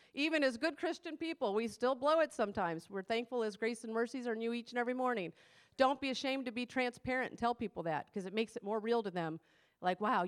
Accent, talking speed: American, 245 wpm